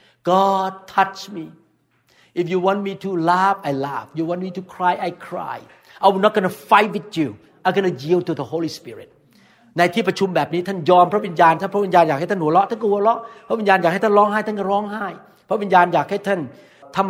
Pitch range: 160-200 Hz